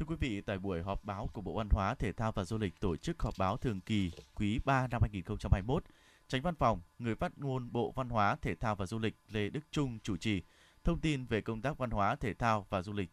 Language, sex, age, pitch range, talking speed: Vietnamese, male, 20-39, 105-140 Hz, 260 wpm